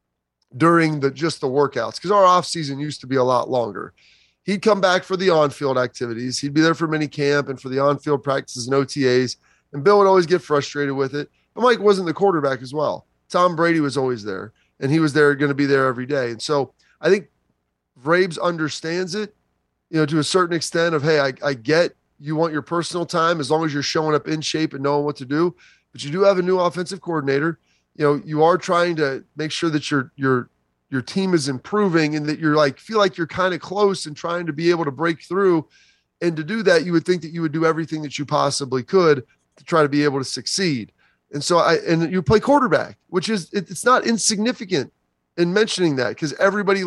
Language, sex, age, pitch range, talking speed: English, male, 30-49, 140-185 Hz, 235 wpm